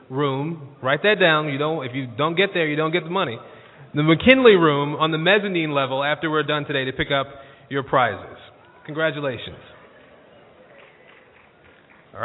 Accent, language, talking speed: American, English, 165 wpm